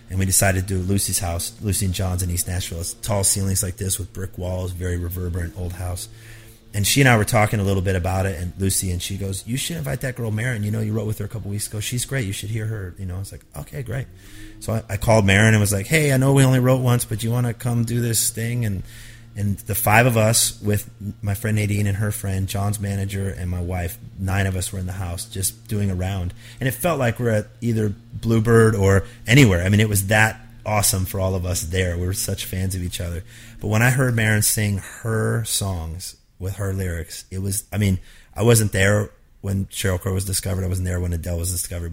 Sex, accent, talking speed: male, American, 260 wpm